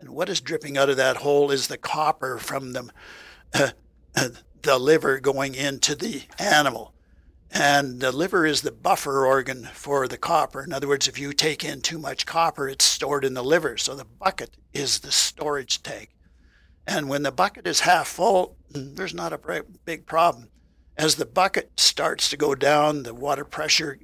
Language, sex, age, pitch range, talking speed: English, male, 60-79, 130-150 Hz, 185 wpm